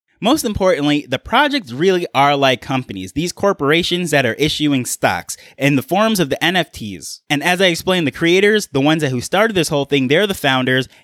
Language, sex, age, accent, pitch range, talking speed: English, male, 20-39, American, 130-170 Hz, 200 wpm